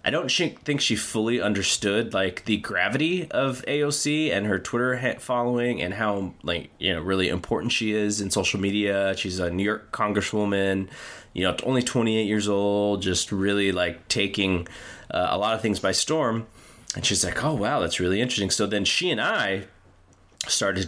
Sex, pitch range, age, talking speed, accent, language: male, 95-110 Hz, 20-39, 180 wpm, American, English